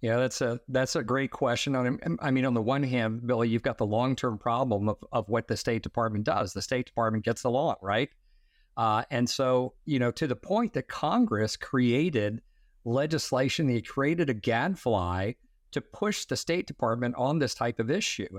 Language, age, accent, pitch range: English, 50-69, American, 115-140 Hz